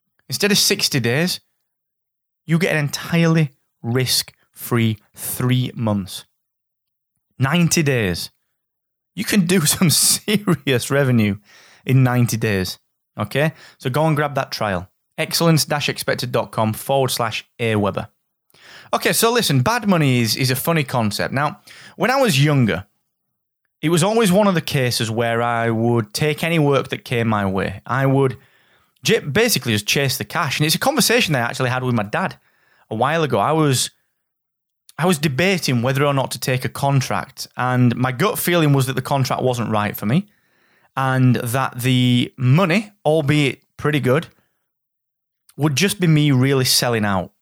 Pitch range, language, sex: 120-160 Hz, English, male